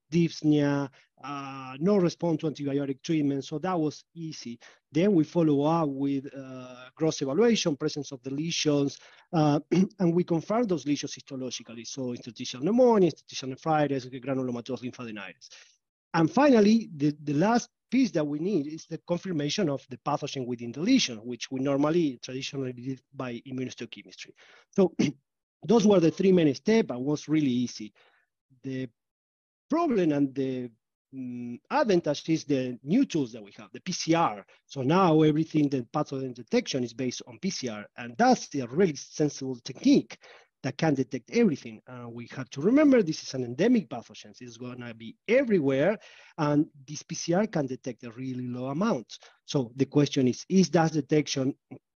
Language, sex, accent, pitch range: English, male, Argentinian, 130-165 Hz